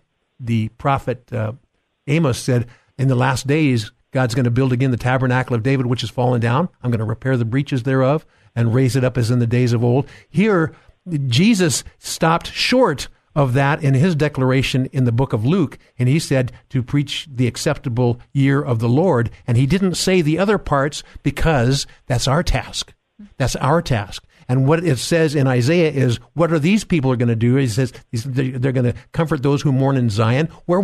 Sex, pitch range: male, 125-155 Hz